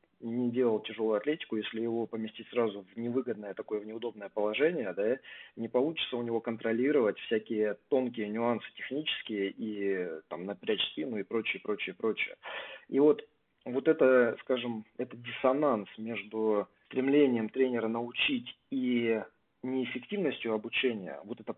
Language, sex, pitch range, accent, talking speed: Russian, male, 110-130 Hz, native, 135 wpm